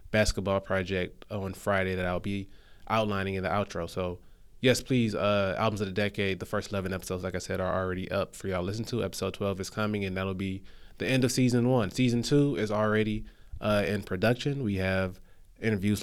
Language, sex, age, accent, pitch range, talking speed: English, male, 20-39, American, 95-105 Hz, 210 wpm